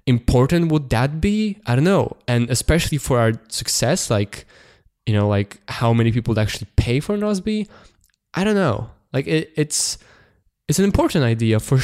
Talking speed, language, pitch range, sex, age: 170 wpm, English, 110-135 Hz, male, 20-39